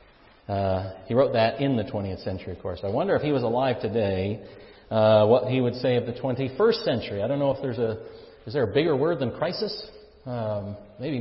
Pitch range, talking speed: 115-150 Hz, 220 wpm